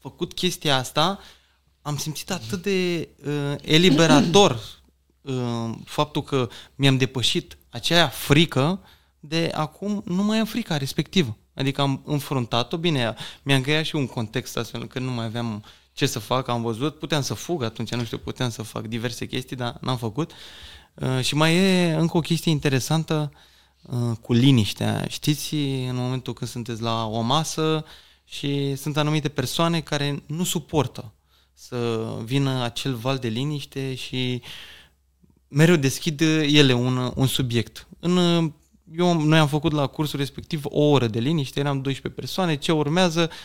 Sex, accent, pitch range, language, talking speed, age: male, native, 120-155 Hz, Romanian, 155 wpm, 20-39